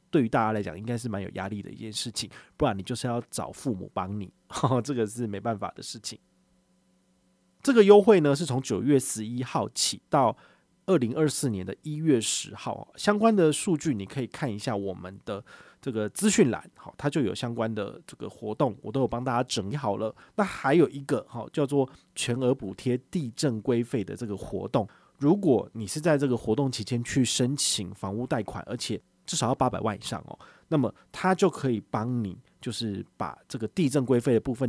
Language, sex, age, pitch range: Chinese, male, 30-49, 100-135 Hz